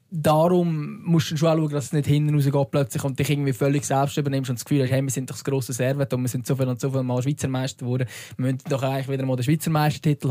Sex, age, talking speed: male, 20-39, 295 wpm